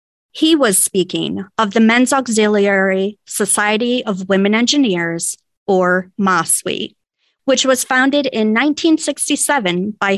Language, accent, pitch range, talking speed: English, American, 190-255 Hz, 110 wpm